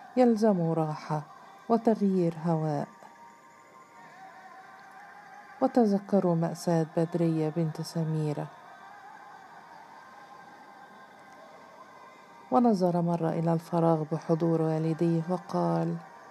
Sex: female